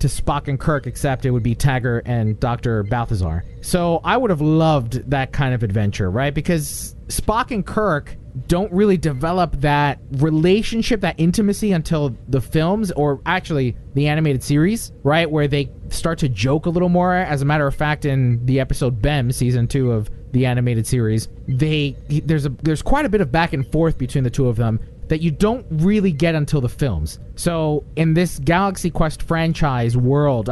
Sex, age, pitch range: male, 30-49, 130-165 Hz